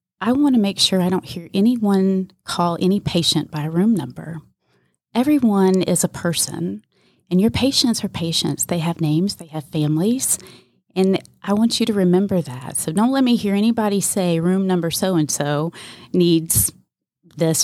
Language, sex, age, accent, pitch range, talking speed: English, female, 30-49, American, 160-200 Hz, 170 wpm